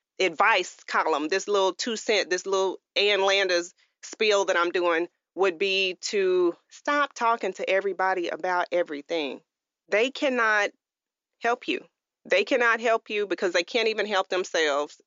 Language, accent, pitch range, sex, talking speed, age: English, American, 185-240 Hz, female, 145 wpm, 30-49